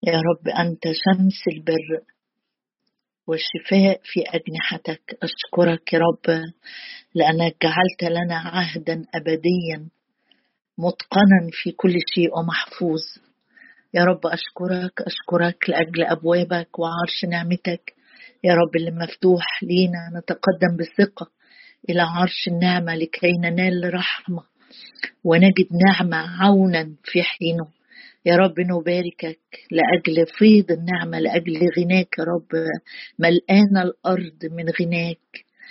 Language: Arabic